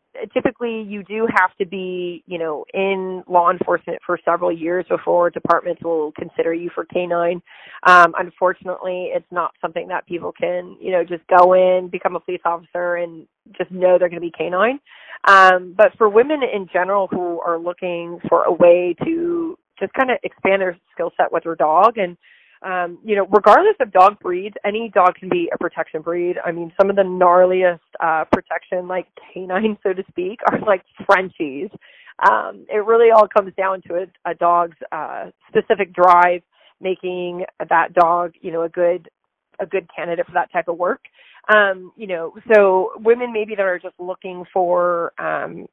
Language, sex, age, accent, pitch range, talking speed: English, female, 30-49, American, 175-200 Hz, 185 wpm